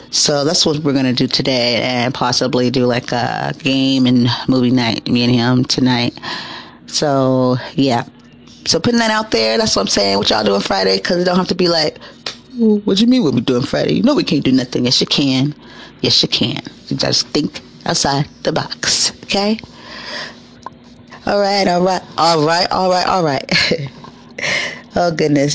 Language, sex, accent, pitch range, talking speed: English, female, American, 130-175 Hz, 175 wpm